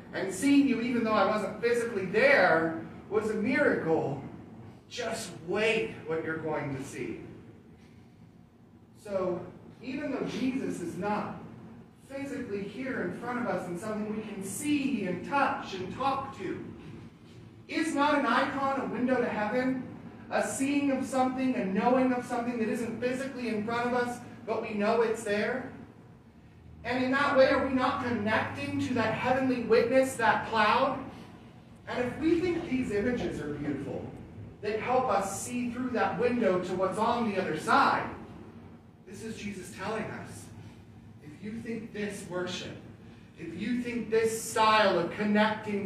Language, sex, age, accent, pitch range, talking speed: English, male, 40-59, American, 180-245 Hz, 160 wpm